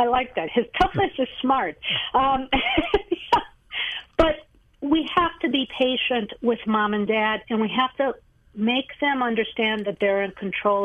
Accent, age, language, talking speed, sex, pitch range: American, 50-69, English, 160 wpm, female, 195-250 Hz